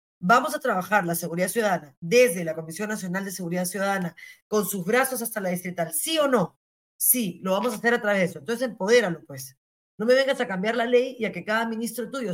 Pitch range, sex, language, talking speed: 180-230 Hz, female, Spanish, 230 wpm